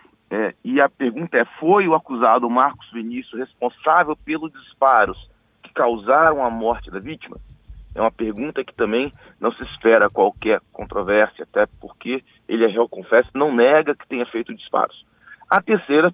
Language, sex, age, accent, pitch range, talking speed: Portuguese, male, 40-59, Brazilian, 110-130 Hz, 155 wpm